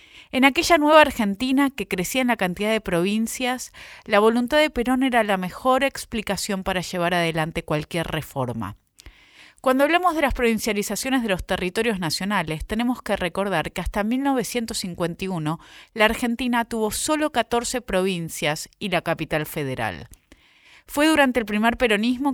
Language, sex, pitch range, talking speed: Spanish, female, 170-245 Hz, 145 wpm